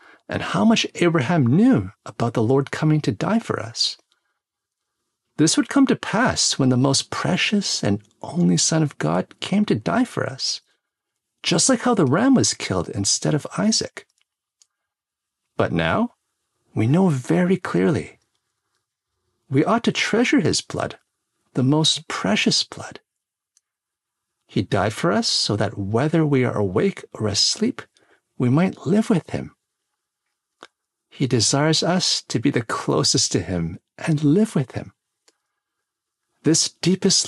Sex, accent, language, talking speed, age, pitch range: male, American, English, 145 wpm, 50-69, 130-195 Hz